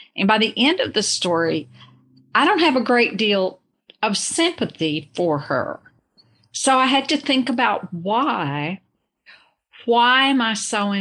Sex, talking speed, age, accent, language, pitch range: female, 155 wpm, 50-69, American, English, 195-260 Hz